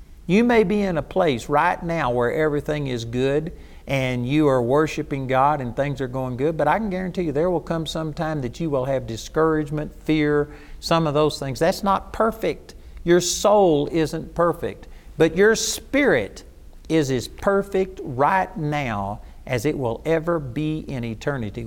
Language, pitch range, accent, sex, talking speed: English, 125-170 Hz, American, male, 175 wpm